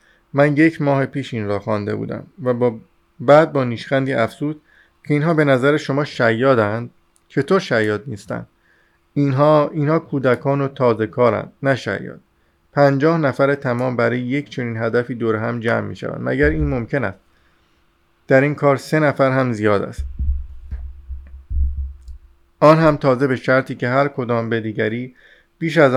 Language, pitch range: Persian, 110-135 Hz